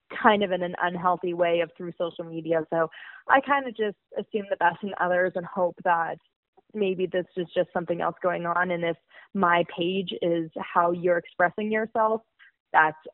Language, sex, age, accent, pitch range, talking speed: English, female, 20-39, American, 165-190 Hz, 185 wpm